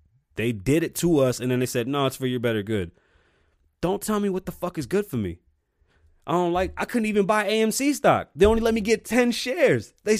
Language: English